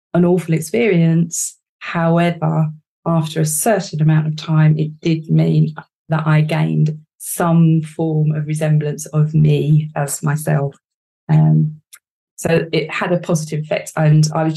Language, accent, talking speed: English, British, 140 wpm